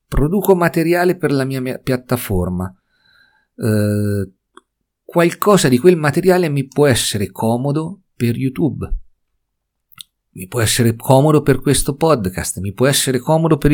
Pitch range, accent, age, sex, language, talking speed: 95-145 Hz, native, 50-69, male, Italian, 125 wpm